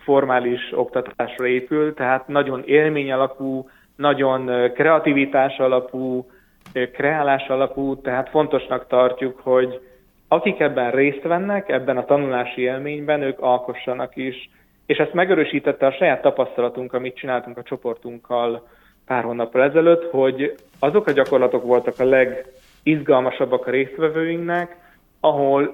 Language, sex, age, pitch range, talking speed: Hungarian, male, 30-49, 125-145 Hz, 115 wpm